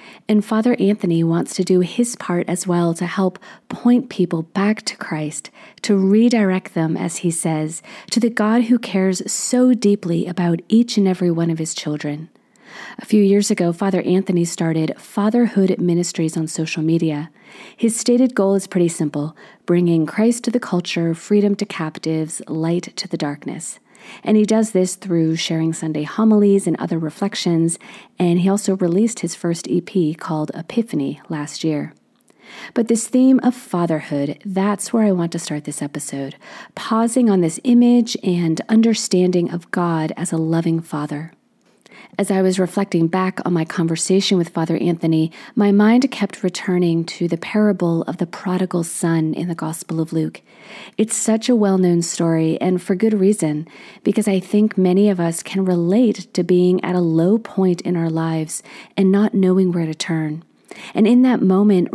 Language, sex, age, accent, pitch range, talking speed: English, female, 40-59, American, 165-210 Hz, 170 wpm